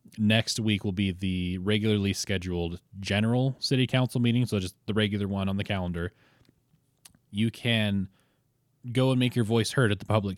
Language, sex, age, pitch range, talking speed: English, male, 20-39, 95-115 Hz, 175 wpm